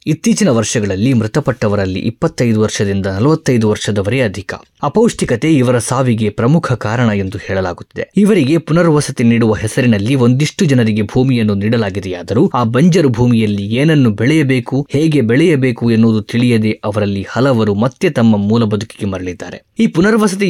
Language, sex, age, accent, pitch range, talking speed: Kannada, male, 20-39, native, 105-140 Hz, 115 wpm